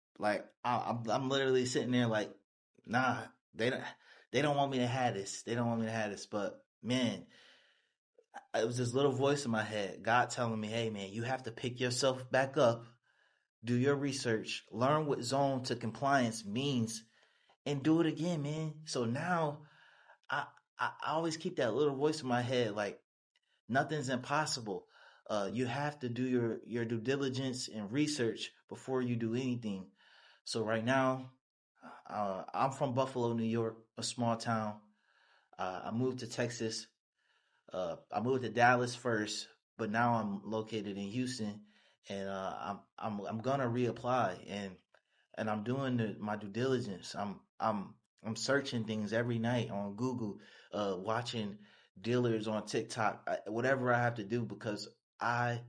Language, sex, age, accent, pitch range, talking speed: English, male, 30-49, American, 110-130 Hz, 170 wpm